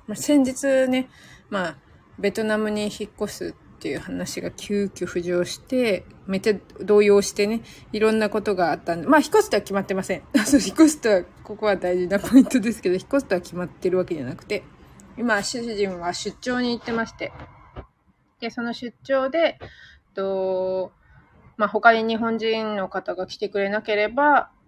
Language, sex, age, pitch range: Japanese, female, 20-39, 190-240 Hz